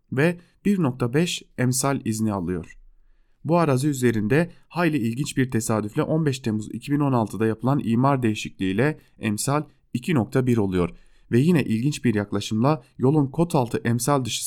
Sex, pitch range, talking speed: male, 110-150 Hz, 130 wpm